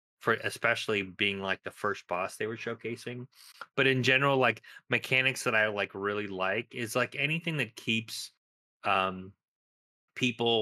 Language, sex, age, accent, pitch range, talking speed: English, male, 20-39, American, 95-115 Hz, 145 wpm